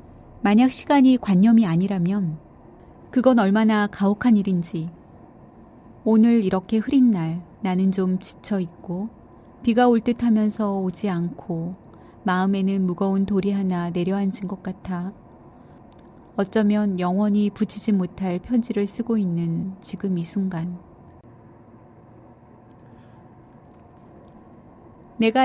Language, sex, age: Korean, female, 30-49